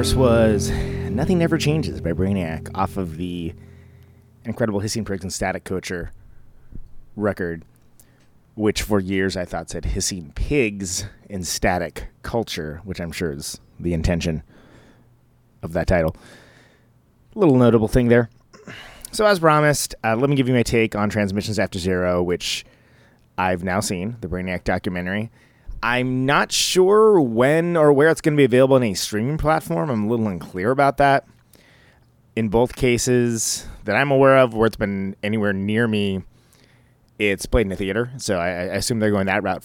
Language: English